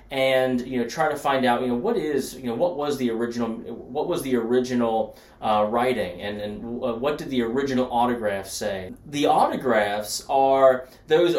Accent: American